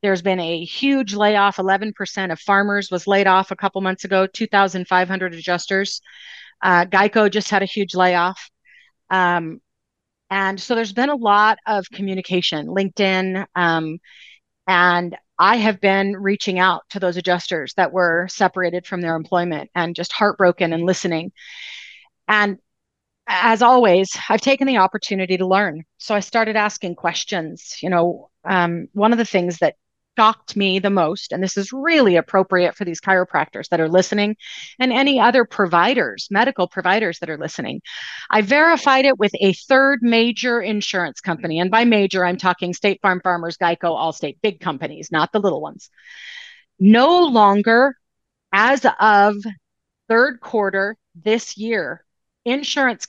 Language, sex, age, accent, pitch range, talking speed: English, female, 30-49, American, 180-220 Hz, 155 wpm